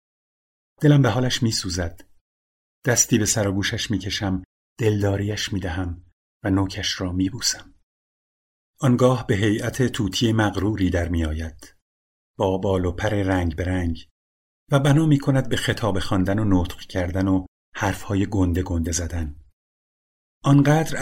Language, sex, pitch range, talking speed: Persian, male, 95-120 Hz, 135 wpm